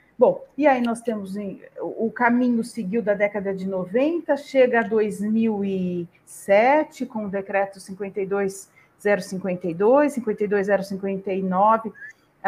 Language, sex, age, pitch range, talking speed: Portuguese, female, 40-59, 205-260 Hz, 95 wpm